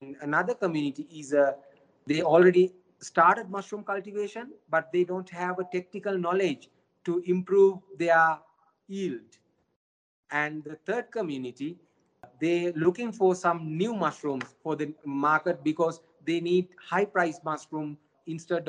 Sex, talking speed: male, 125 wpm